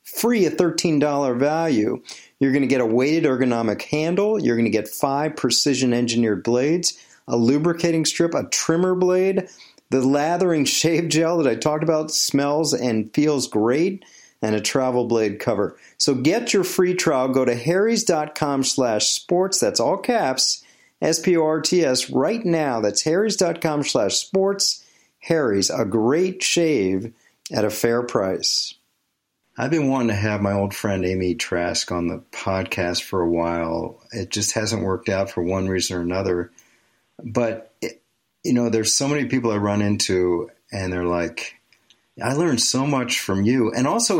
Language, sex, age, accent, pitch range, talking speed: English, male, 40-59, American, 105-155 Hz, 160 wpm